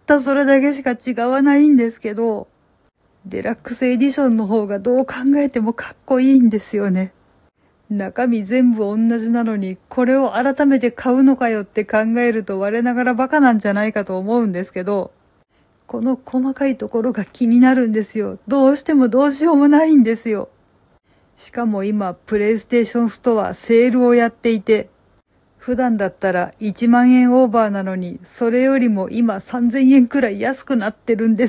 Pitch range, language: 195-245 Hz, Japanese